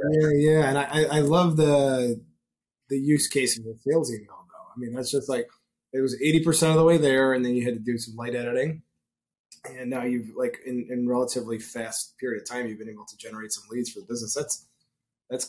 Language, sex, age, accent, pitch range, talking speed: English, male, 20-39, American, 115-140 Hz, 235 wpm